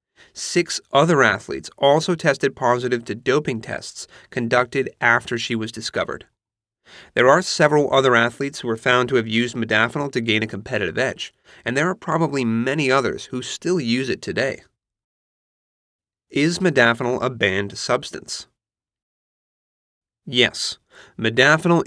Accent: American